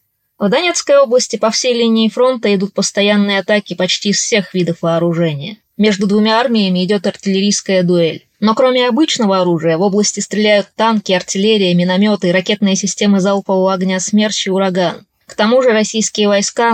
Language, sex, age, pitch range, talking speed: Russian, female, 20-39, 185-220 Hz, 155 wpm